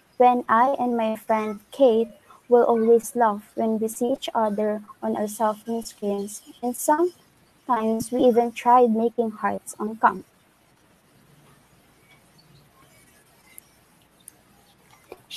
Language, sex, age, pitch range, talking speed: Filipino, female, 20-39, 220-250 Hz, 110 wpm